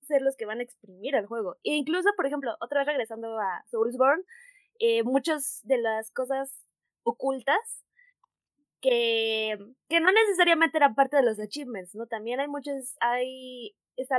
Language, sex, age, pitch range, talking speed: Spanish, female, 20-39, 215-275 Hz, 160 wpm